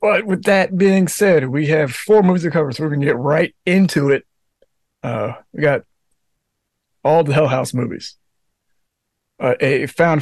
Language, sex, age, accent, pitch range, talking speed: English, male, 30-49, American, 130-155 Hz, 175 wpm